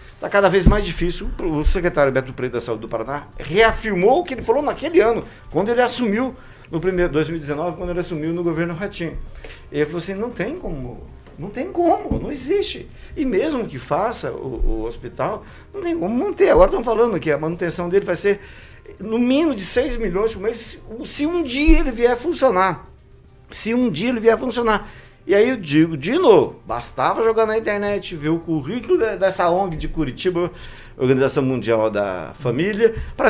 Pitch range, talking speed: 155-235 Hz, 195 wpm